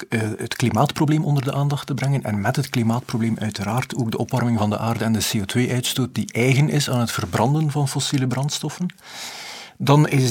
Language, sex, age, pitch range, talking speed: Dutch, male, 50-69, 115-150 Hz, 185 wpm